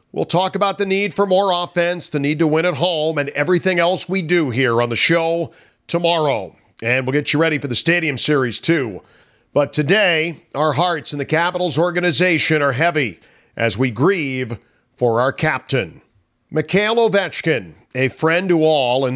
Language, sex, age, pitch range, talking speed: English, male, 50-69, 135-170 Hz, 180 wpm